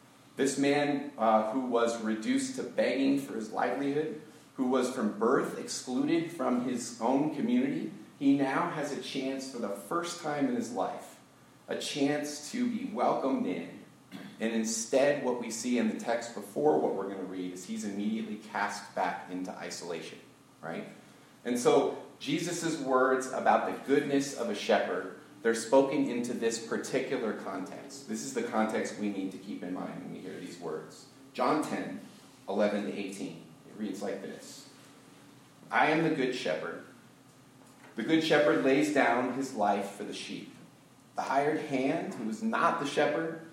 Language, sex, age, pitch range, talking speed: English, male, 40-59, 115-150 Hz, 170 wpm